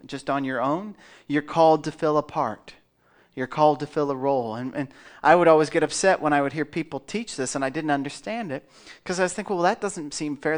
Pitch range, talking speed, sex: 135-165 Hz, 250 wpm, male